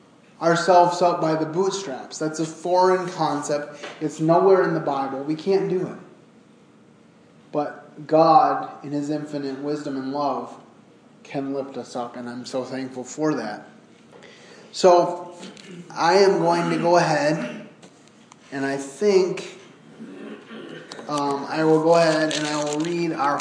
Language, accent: English, American